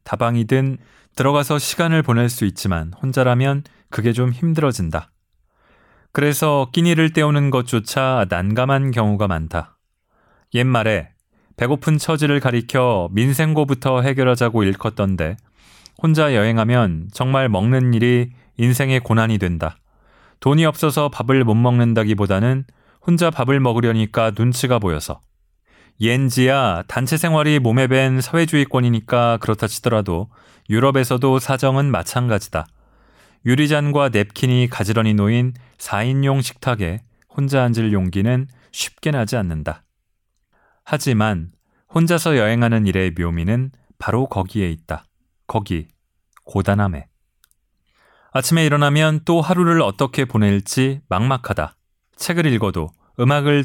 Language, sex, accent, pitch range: Korean, male, native, 100-135 Hz